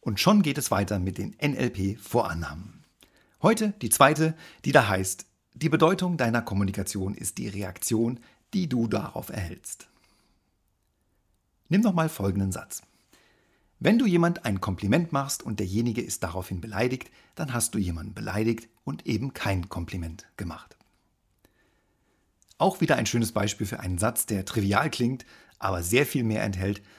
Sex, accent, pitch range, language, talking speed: male, German, 95-135 Hz, German, 145 wpm